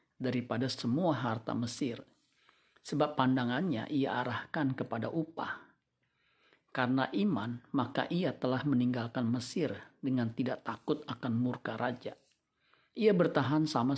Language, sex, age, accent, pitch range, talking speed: Indonesian, male, 50-69, native, 115-140 Hz, 110 wpm